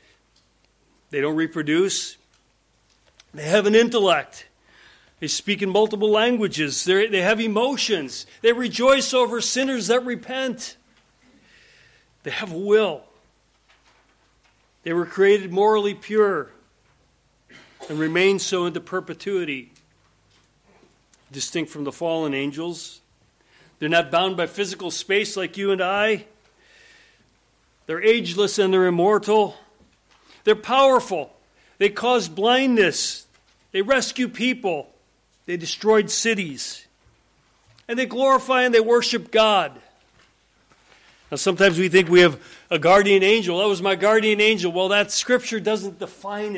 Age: 40-59